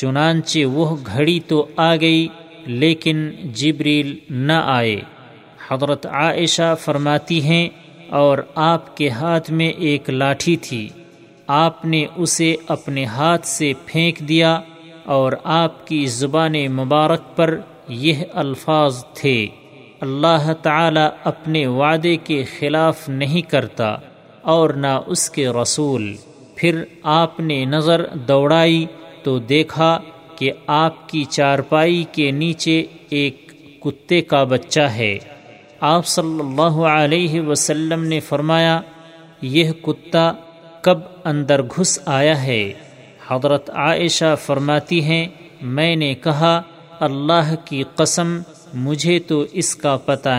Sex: male